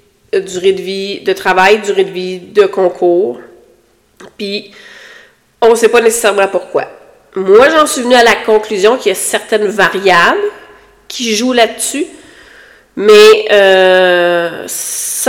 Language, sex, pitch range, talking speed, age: French, female, 190-265 Hz, 135 wpm, 30-49